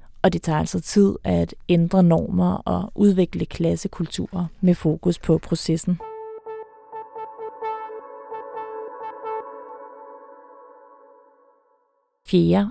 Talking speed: 75 wpm